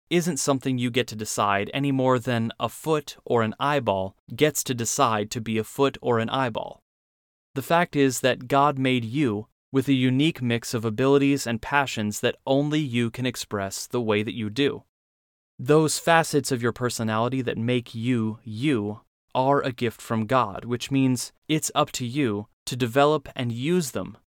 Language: English